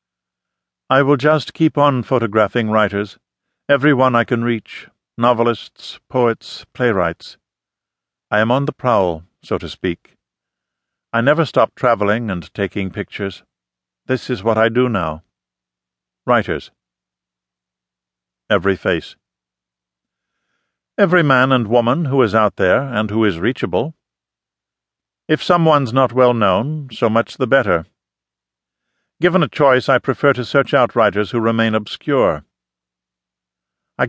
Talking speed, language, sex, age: 125 wpm, English, male, 50-69